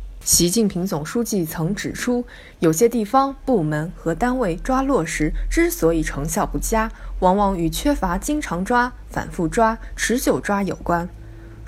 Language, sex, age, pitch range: Chinese, female, 20-39, 160-245 Hz